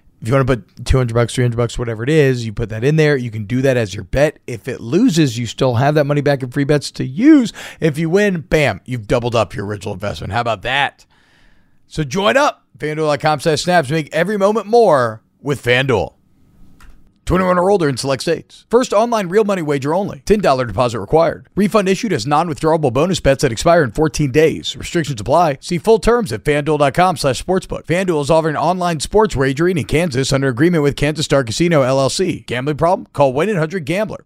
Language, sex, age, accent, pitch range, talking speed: English, male, 40-59, American, 135-190 Hz, 200 wpm